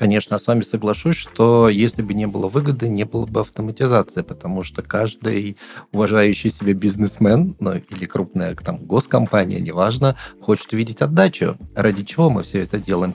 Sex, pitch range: male, 105-125 Hz